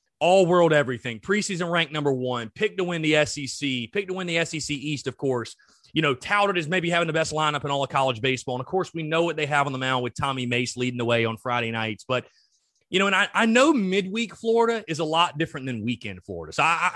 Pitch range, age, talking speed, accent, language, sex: 130-195 Hz, 30-49, 255 wpm, American, English, male